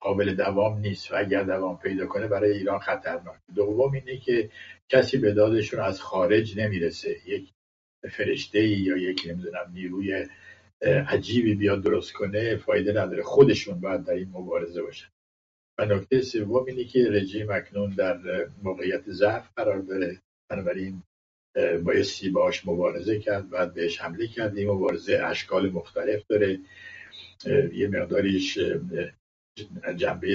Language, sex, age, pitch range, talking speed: English, male, 60-79, 95-110 Hz, 130 wpm